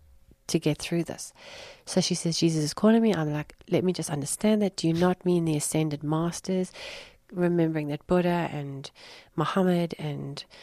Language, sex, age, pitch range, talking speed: English, female, 40-59, 155-180 Hz, 175 wpm